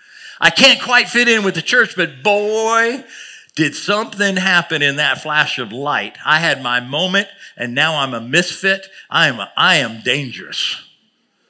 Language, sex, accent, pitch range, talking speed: English, male, American, 135-195 Hz, 170 wpm